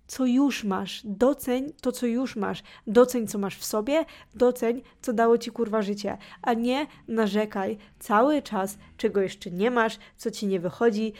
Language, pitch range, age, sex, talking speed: Polish, 205-250 Hz, 20-39, female, 170 wpm